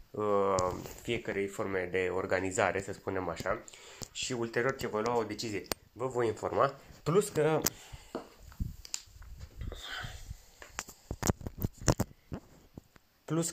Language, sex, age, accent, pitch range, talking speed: Romanian, male, 20-39, native, 105-145 Hz, 90 wpm